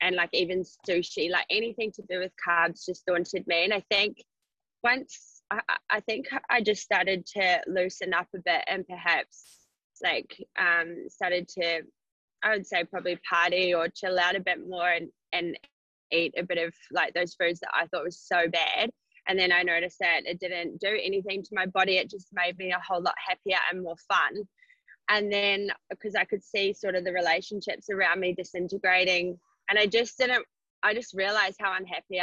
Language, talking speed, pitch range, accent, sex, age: English, 195 wpm, 175-205 Hz, Australian, female, 20-39